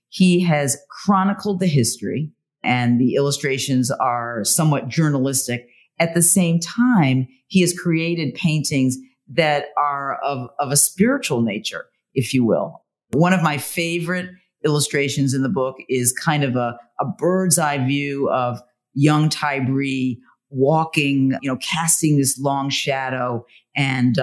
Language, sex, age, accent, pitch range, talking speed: English, female, 50-69, American, 130-165 Hz, 140 wpm